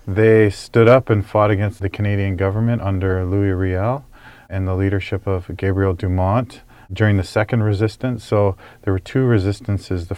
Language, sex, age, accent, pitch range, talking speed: English, male, 40-59, American, 95-110 Hz, 165 wpm